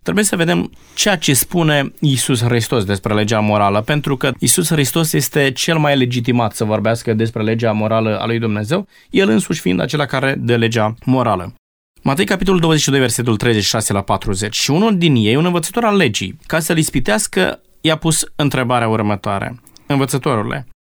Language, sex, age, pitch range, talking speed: Romanian, male, 20-39, 115-155 Hz, 165 wpm